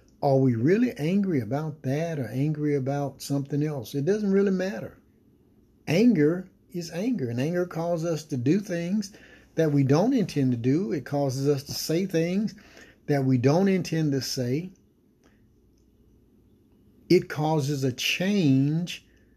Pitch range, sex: 135-170 Hz, male